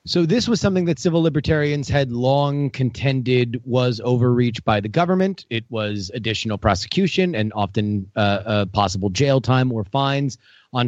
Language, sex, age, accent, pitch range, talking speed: English, male, 30-49, American, 115-155 Hz, 160 wpm